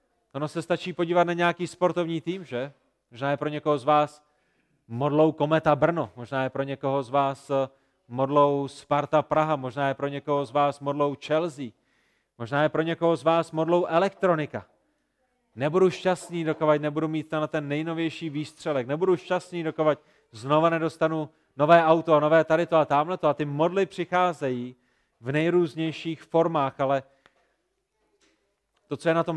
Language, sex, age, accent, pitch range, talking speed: Czech, male, 30-49, native, 140-170 Hz, 160 wpm